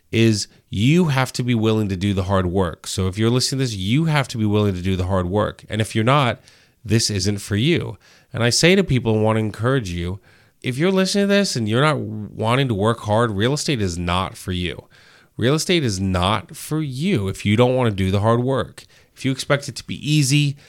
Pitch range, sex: 100-125 Hz, male